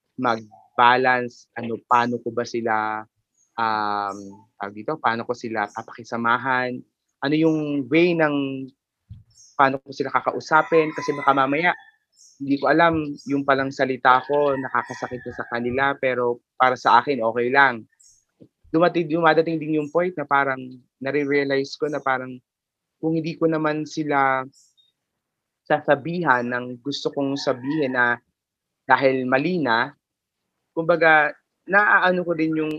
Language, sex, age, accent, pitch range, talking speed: Filipino, male, 20-39, native, 120-155 Hz, 130 wpm